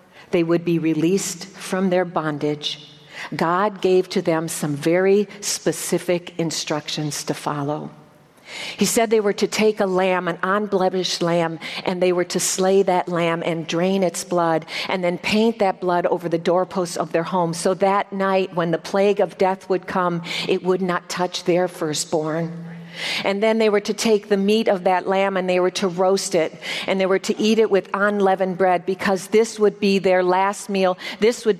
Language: English